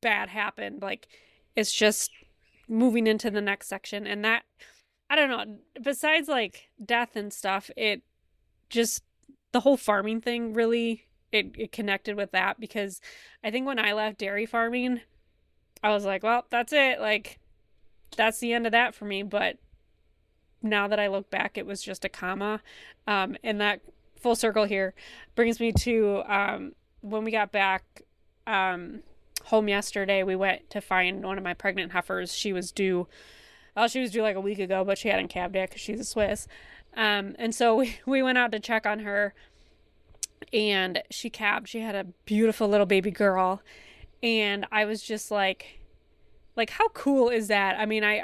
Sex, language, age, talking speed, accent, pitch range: female, English, 20-39, 180 wpm, American, 200-230 Hz